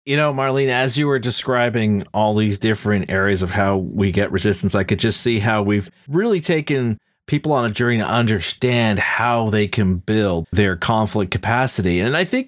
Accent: American